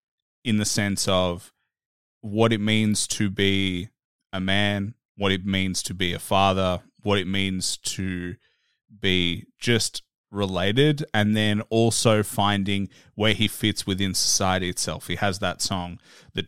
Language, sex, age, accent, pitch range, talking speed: English, male, 20-39, Australian, 95-110 Hz, 145 wpm